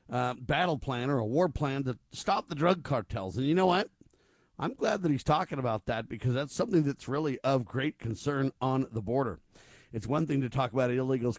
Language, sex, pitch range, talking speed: English, male, 120-145 Hz, 215 wpm